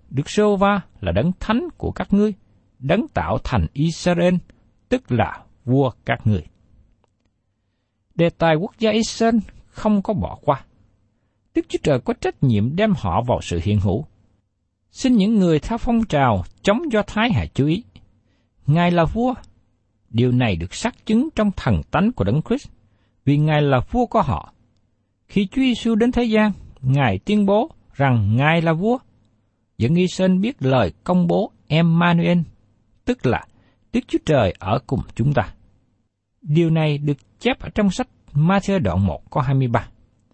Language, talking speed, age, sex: Vietnamese, 165 wpm, 60-79, male